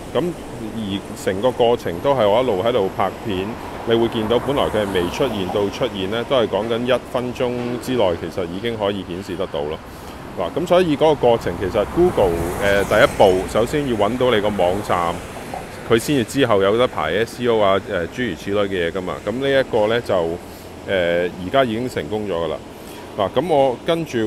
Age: 30-49